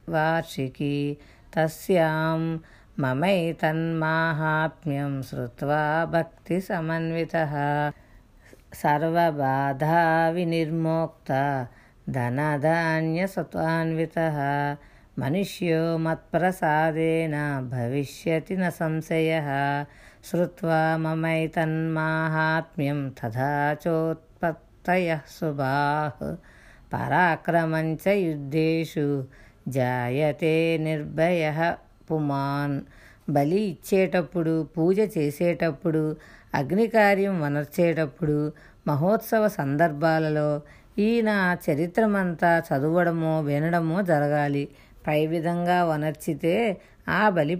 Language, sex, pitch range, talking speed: Telugu, female, 145-170 Hz, 50 wpm